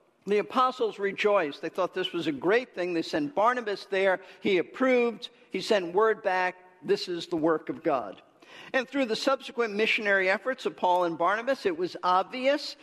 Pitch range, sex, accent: 185-245 Hz, male, American